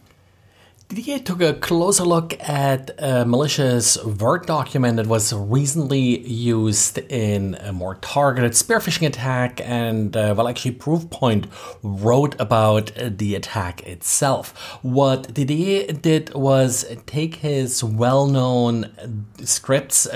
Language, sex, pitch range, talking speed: English, male, 115-145 Hz, 115 wpm